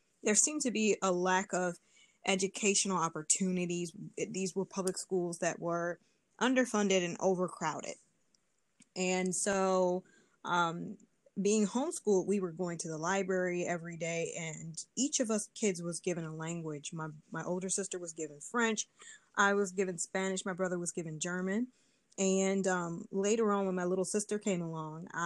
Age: 20-39